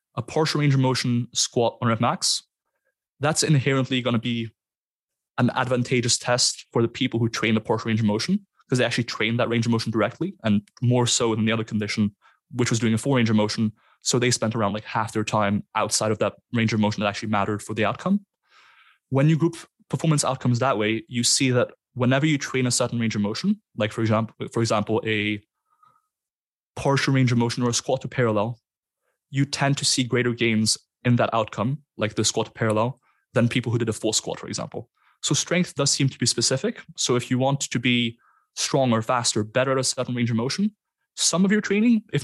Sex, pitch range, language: male, 110-135 Hz, English